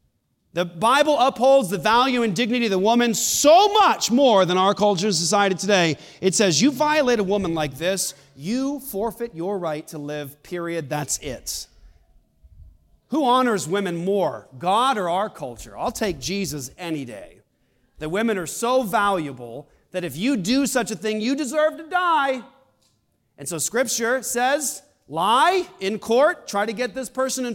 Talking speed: 170 wpm